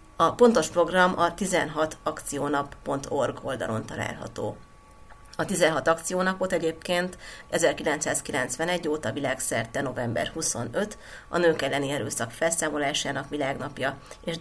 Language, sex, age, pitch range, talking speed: Hungarian, female, 30-49, 130-170 Hz, 95 wpm